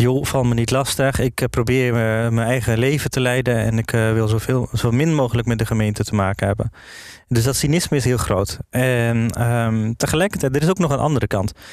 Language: Dutch